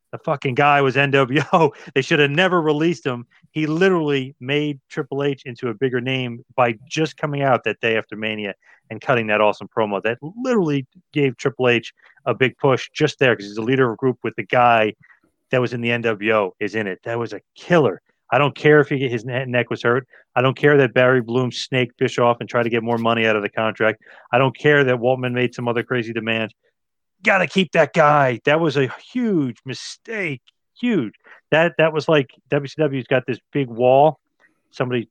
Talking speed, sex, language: 210 wpm, male, English